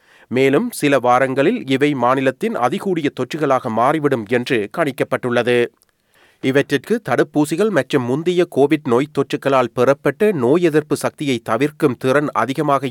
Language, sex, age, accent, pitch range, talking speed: Tamil, male, 30-49, native, 130-160 Hz, 110 wpm